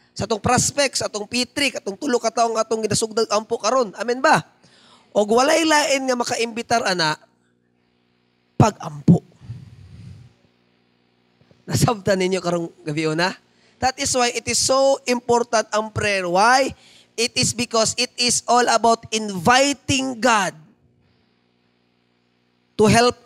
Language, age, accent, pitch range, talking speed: Filipino, 20-39, native, 150-245 Hz, 125 wpm